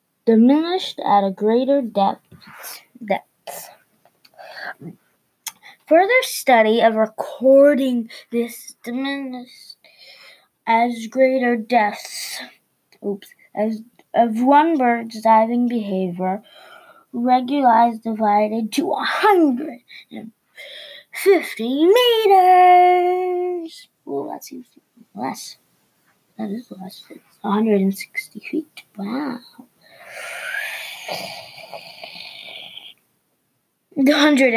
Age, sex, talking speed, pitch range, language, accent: 20-39, female, 75 wpm, 220-305 Hz, English, American